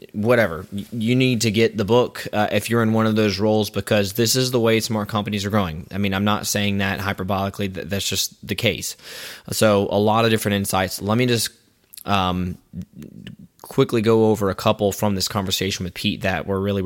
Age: 20-39